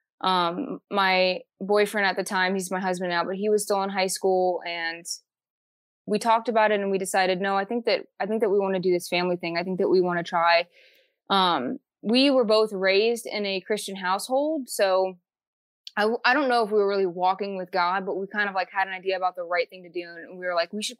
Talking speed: 250 wpm